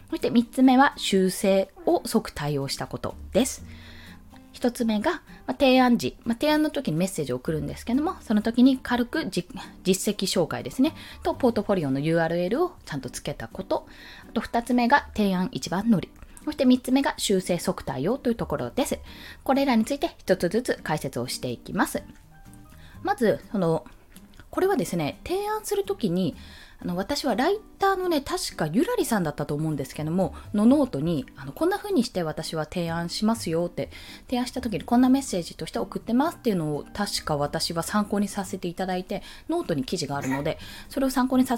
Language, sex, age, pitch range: Japanese, female, 20-39, 170-270 Hz